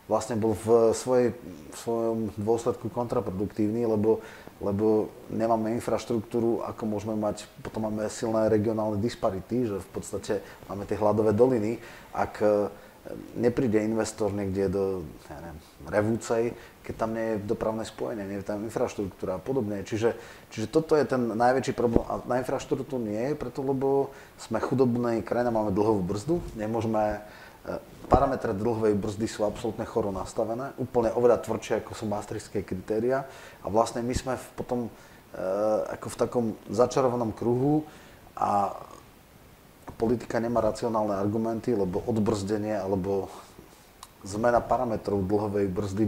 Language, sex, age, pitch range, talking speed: Slovak, male, 30-49, 105-120 Hz, 140 wpm